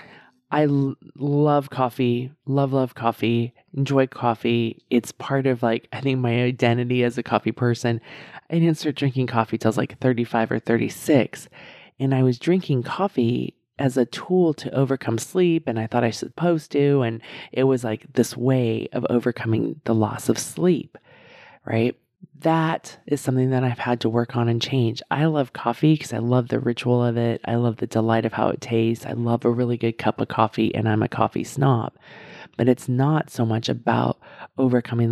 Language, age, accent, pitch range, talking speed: English, 20-39, American, 115-140 Hz, 190 wpm